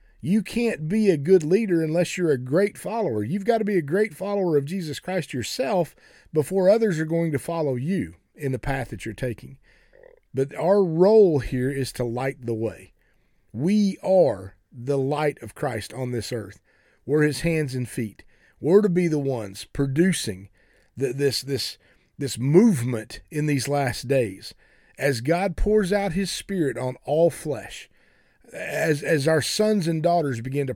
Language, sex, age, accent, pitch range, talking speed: English, male, 40-59, American, 125-180 Hz, 175 wpm